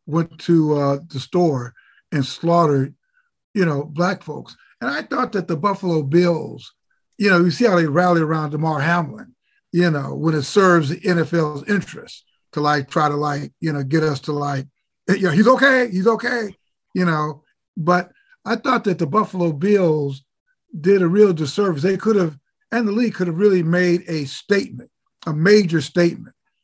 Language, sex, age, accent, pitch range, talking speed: English, male, 50-69, American, 155-200 Hz, 185 wpm